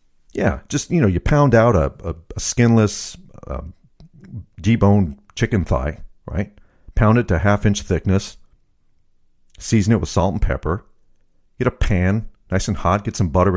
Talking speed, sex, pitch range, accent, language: 165 wpm, male, 95-125 Hz, American, English